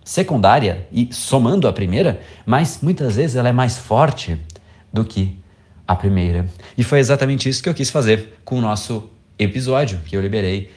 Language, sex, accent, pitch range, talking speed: Portuguese, male, Brazilian, 90-125 Hz, 175 wpm